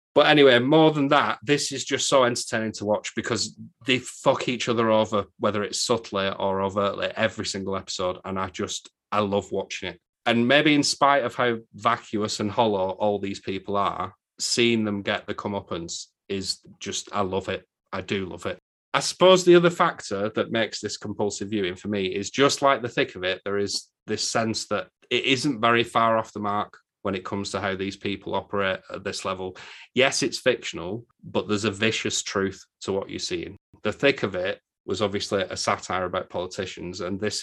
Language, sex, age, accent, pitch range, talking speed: English, male, 30-49, British, 100-125 Hz, 200 wpm